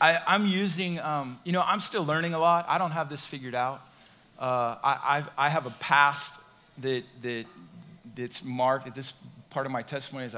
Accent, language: American, English